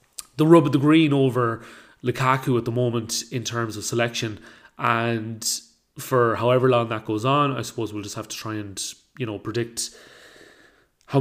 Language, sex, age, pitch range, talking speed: English, male, 30-49, 110-130 Hz, 175 wpm